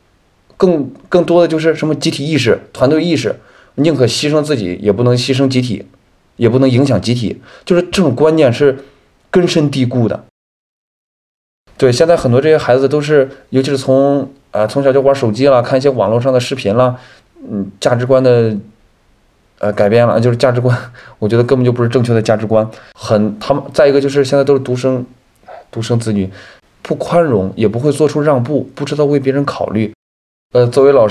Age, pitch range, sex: 20-39, 110-145 Hz, male